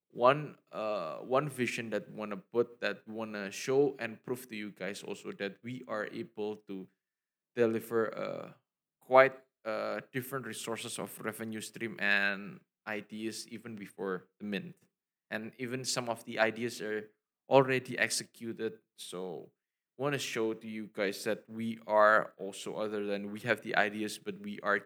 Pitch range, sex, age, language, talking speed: 105-120 Hz, male, 20-39, English, 160 wpm